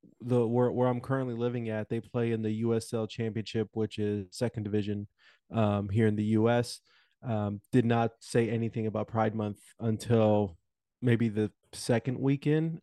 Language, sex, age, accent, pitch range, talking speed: English, male, 30-49, American, 110-130 Hz, 165 wpm